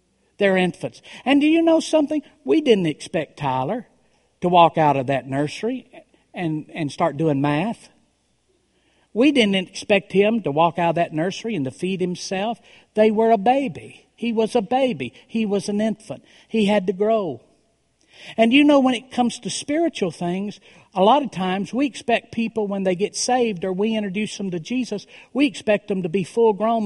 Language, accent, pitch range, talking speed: English, American, 170-245 Hz, 190 wpm